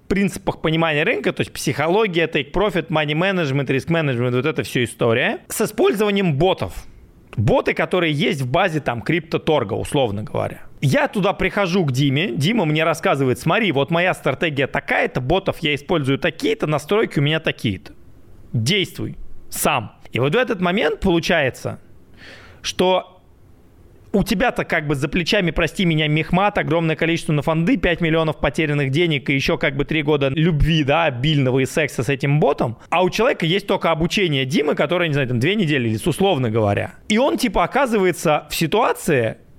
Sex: male